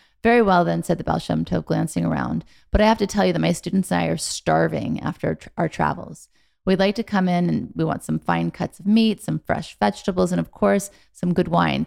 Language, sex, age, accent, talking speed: English, female, 30-49, American, 240 wpm